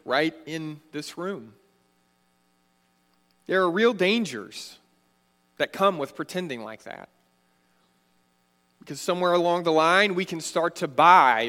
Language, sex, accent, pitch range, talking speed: English, male, American, 130-195 Hz, 125 wpm